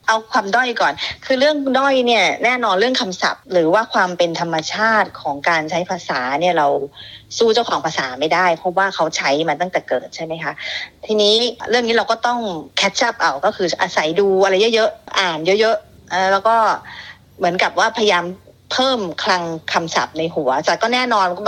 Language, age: Thai, 30-49